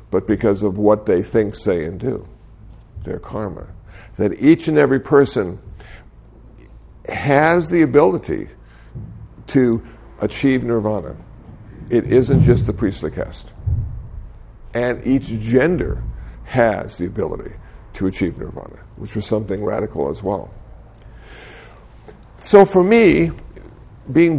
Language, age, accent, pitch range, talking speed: English, 60-79, American, 105-140 Hz, 115 wpm